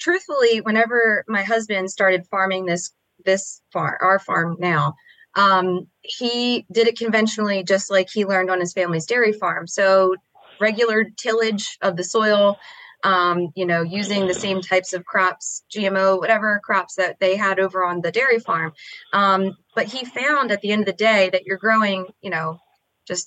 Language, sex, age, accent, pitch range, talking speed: English, female, 20-39, American, 185-225 Hz, 175 wpm